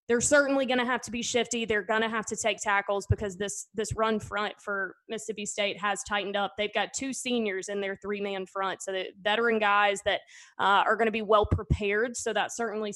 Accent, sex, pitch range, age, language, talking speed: American, female, 205-250 Hz, 20-39, English, 225 wpm